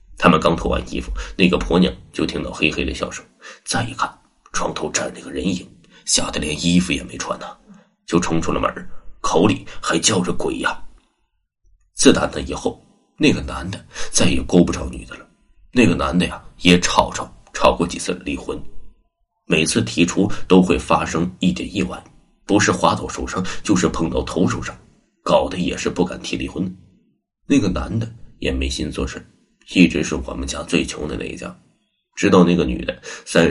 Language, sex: Chinese, male